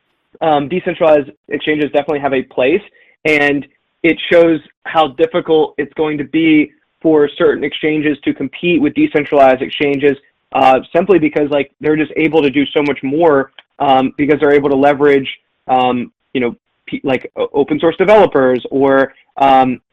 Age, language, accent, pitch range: 20-39, English, American, 140-160 Hz